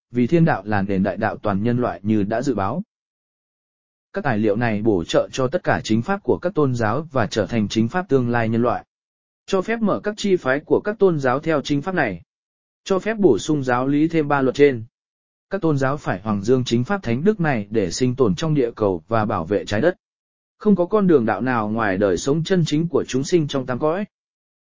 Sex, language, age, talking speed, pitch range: male, English, 20-39, 245 wpm, 115-175 Hz